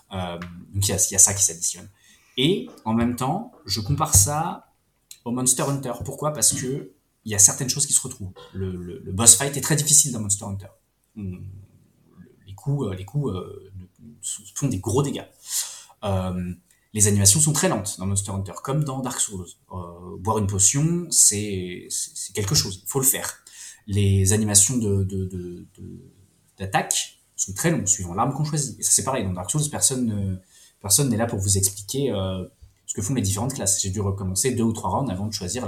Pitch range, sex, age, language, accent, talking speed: 95-125 Hz, male, 20-39, French, French, 205 wpm